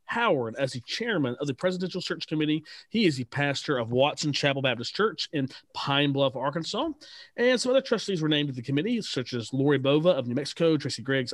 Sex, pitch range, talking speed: male, 125-160 Hz, 210 wpm